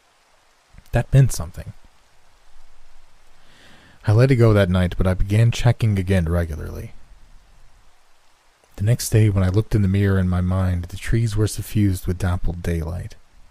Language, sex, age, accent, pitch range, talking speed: English, male, 30-49, American, 90-110 Hz, 150 wpm